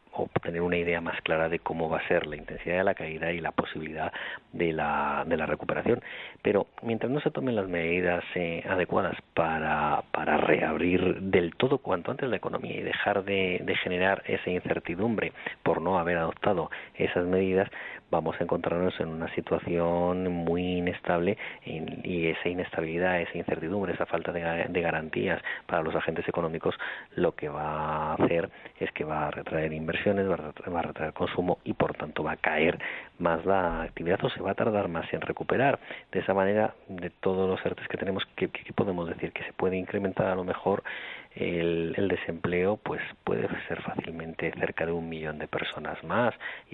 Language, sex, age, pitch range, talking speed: Spanish, male, 30-49, 80-90 Hz, 180 wpm